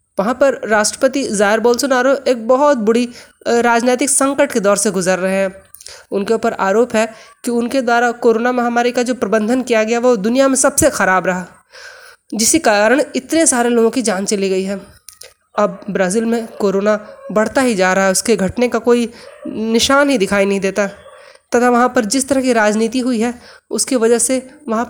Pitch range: 220-275 Hz